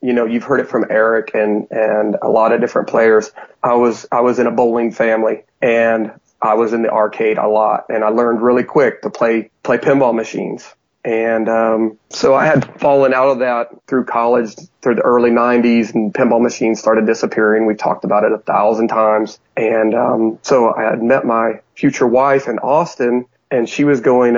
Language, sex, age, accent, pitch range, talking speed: English, male, 30-49, American, 115-125 Hz, 200 wpm